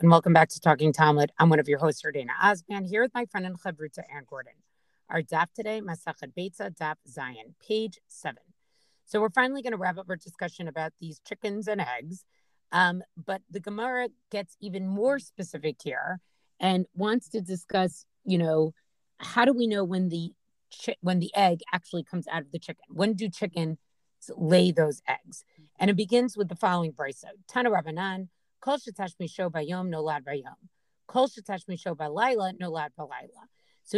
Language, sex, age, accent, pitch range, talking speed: English, female, 40-59, American, 165-210 Hz, 160 wpm